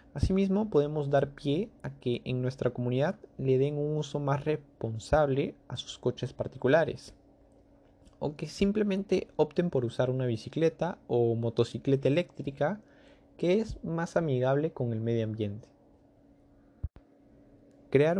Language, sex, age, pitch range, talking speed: Spanish, male, 20-39, 120-155 Hz, 130 wpm